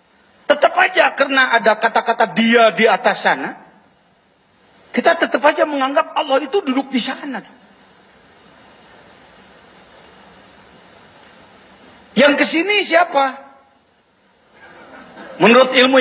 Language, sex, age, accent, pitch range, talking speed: Indonesian, male, 40-59, native, 210-290 Hz, 85 wpm